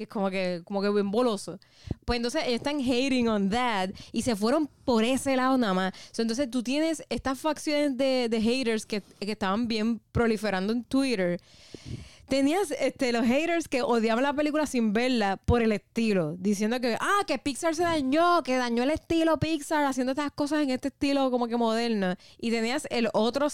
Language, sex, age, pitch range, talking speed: Spanish, female, 20-39, 210-270 Hz, 195 wpm